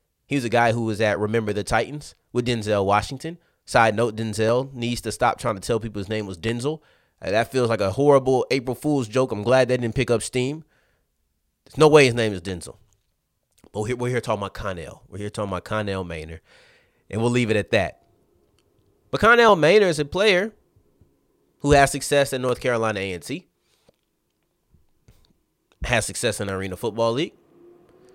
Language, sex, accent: English, male, American